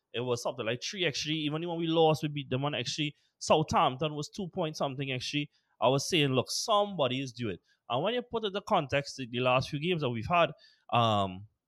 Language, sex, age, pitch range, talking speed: English, male, 20-39, 115-160 Hz, 220 wpm